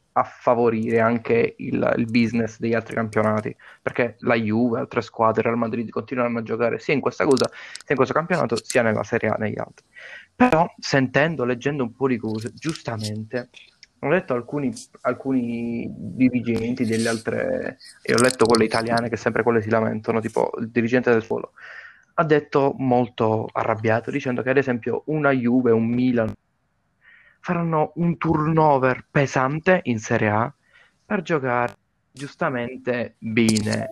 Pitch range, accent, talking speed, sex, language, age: 115-135 Hz, native, 155 wpm, male, Italian, 20-39